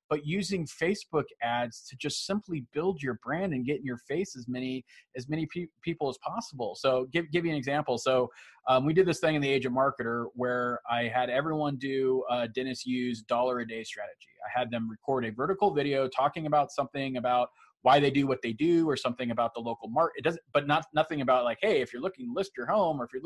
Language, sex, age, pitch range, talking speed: English, male, 20-39, 125-160 Hz, 240 wpm